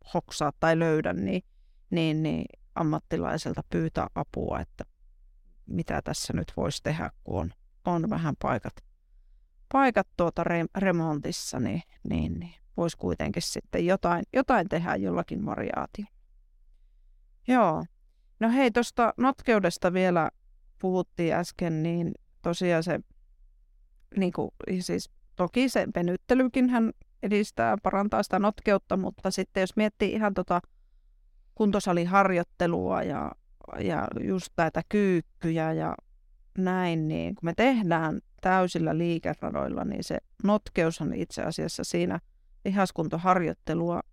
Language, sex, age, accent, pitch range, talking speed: Finnish, female, 30-49, native, 160-200 Hz, 110 wpm